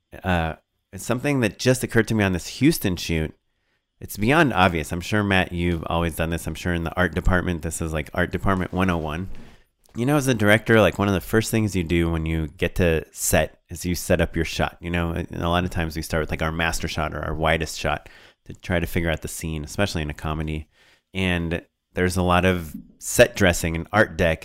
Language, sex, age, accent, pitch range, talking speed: English, male, 30-49, American, 80-100 Hz, 240 wpm